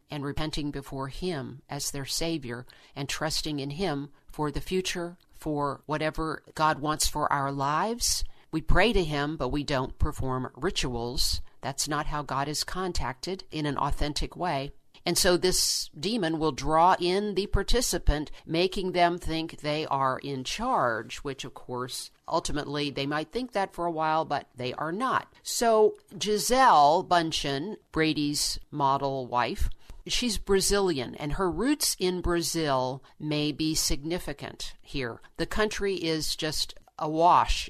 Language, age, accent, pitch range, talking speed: English, 50-69, American, 140-175 Hz, 150 wpm